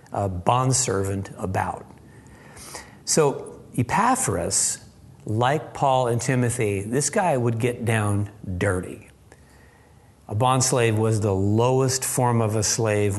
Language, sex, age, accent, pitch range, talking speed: English, male, 50-69, American, 100-125 Hz, 110 wpm